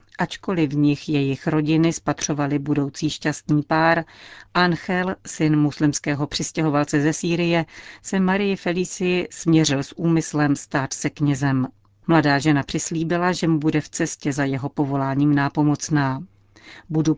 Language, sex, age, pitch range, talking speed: Czech, female, 40-59, 140-165 Hz, 130 wpm